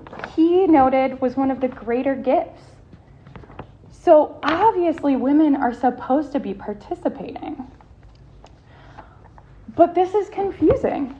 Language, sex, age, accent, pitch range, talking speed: English, female, 10-29, American, 240-315 Hz, 105 wpm